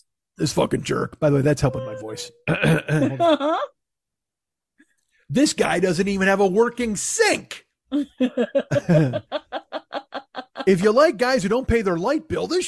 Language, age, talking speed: English, 40-59, 135 wpm